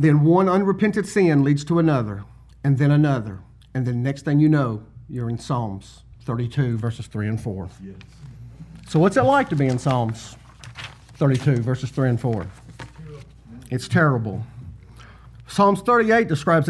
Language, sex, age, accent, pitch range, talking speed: English, male, 50-69, American, 120-170 Hz, 150 wpm